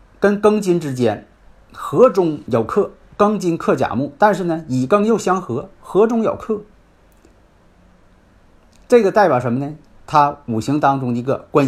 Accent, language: native, Chinese